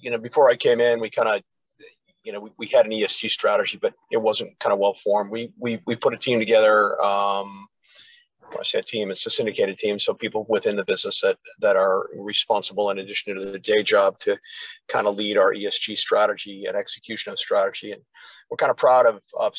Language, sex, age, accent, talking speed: English, male, 50-69, American, 220 wpm